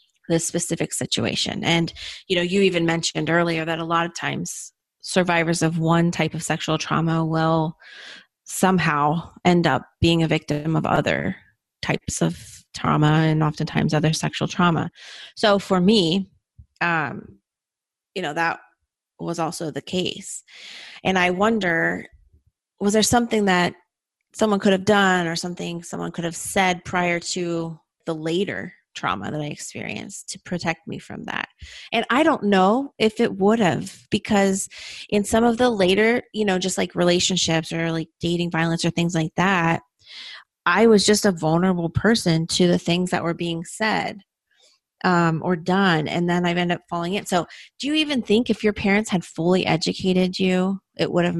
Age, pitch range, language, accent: 30-49, 165-195 Hz, English, American